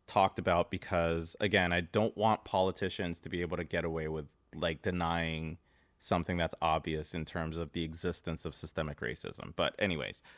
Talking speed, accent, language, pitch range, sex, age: 175 wpm, American, English, 85-105 Hz, male, 30-49